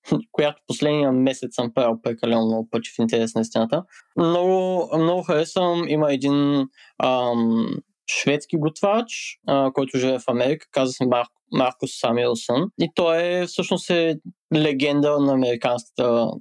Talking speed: 130 wpm